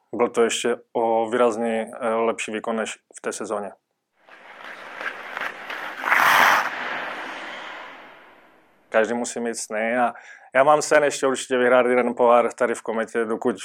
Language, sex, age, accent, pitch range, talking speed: Czech, male, 20-39, native, 115-125 Hz, 125 wpm